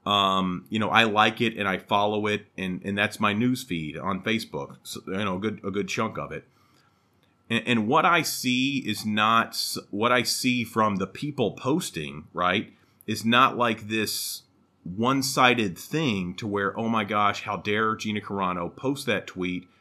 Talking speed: 185 wpm